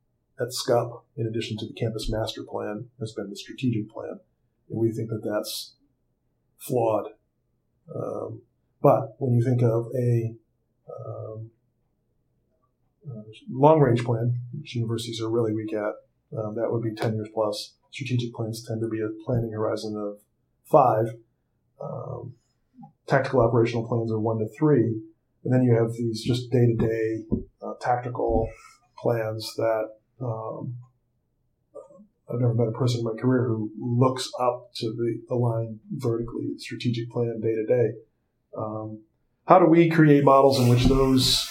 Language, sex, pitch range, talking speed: English, male, 110-125 Hz, 145 wpm